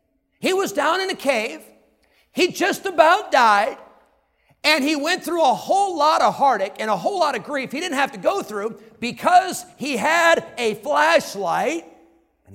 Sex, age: male, 50-69